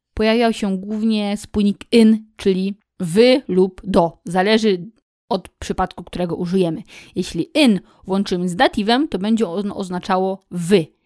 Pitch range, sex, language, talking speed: 180-235 Hz, female, Polish, 125 wpm